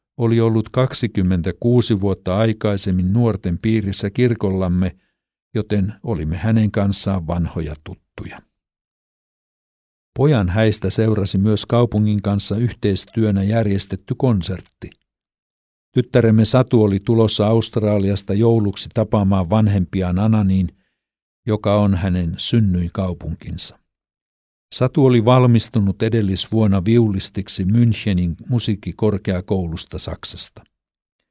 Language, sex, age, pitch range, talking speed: Finnish, male, 60-79, 95-115 Hz, 85 wpm